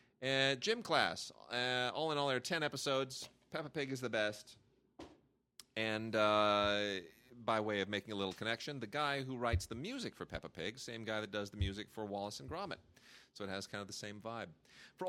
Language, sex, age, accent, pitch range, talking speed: English, male, 30-49, American, 105-125 Hz, 210 wpm